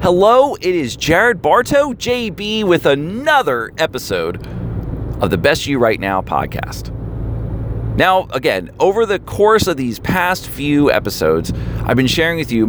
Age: 40-59